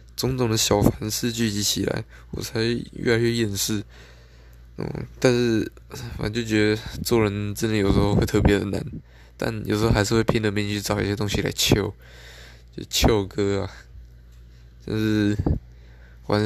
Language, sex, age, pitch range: Chinese, male, 20-39, 90-115 Hz